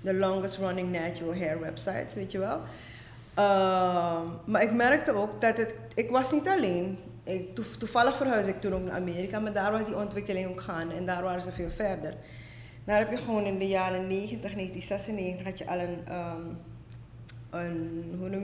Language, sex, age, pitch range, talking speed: Dutch, female, 20-39, 175-215 Hz, 165 wpm